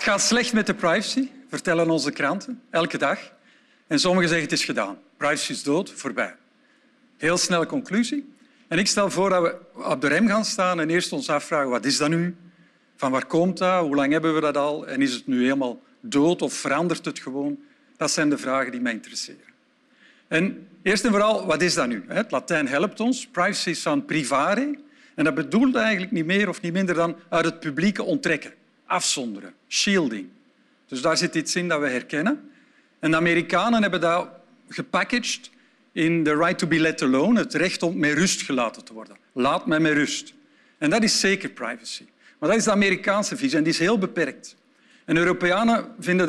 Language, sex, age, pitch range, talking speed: Dutch, male, 50-69, 165-245 Hz, 200 wpm